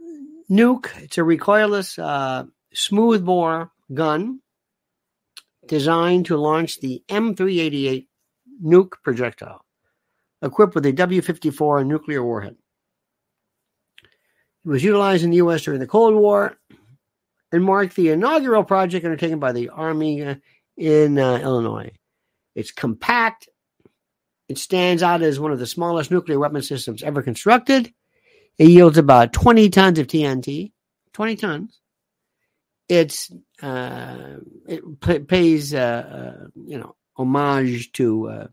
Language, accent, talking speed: English, American, 120 wpm